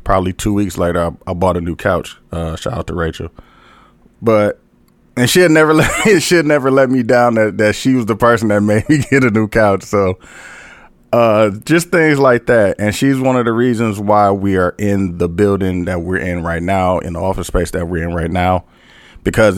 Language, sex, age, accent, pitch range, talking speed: English, male, 20-39, American, 95-125 Hz, 225 wpm